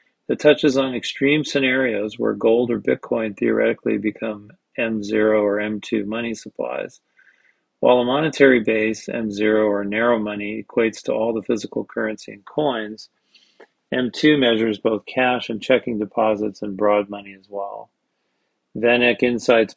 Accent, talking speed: American, 140 wpm